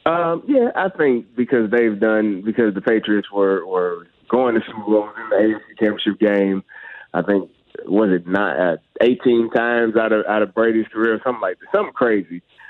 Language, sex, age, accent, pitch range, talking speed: English, male, 30-49, American, 105-115 Hz, 195 wpm